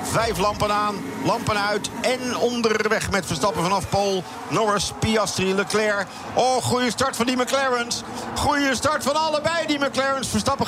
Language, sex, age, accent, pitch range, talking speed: Dutch, male, 50-69, Dutch, 145-230 Hz, 150 wpm